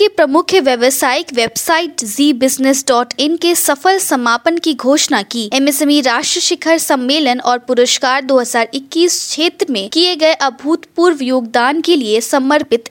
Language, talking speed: Hindi, 125 wpm